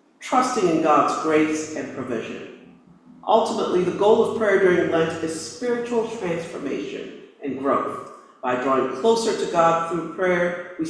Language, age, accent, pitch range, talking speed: English, 50-69, American, 170-275 Hz, 145 wpm